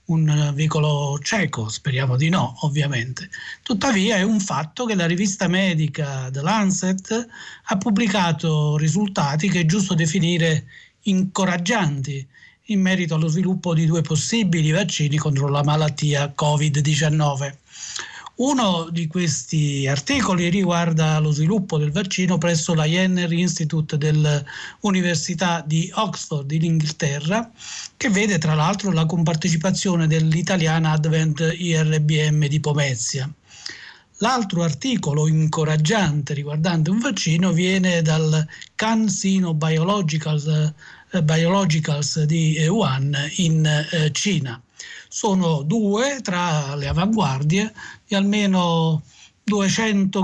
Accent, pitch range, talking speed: native, 155-190 Hz, 105 wpm